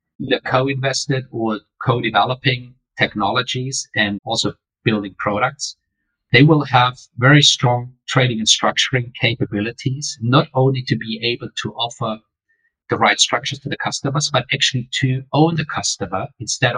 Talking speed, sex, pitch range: 135 wpm, male, 120-145 Hz